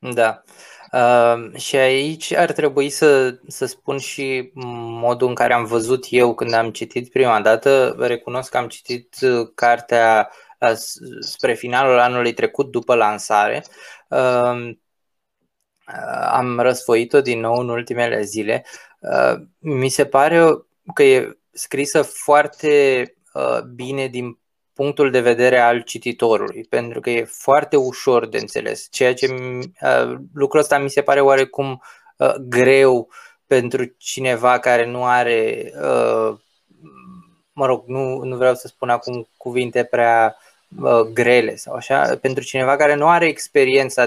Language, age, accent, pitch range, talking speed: Romanian, 20-39, native, 120-145 Hz, 130 wpm